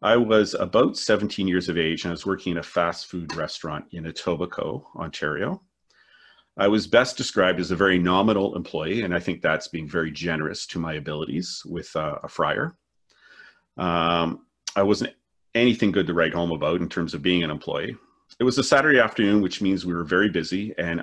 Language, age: English, 40-59